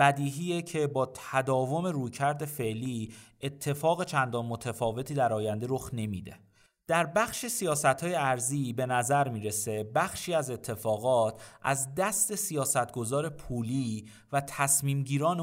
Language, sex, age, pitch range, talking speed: Persian, male, 30-49, 120-160 Hz, 115 wpm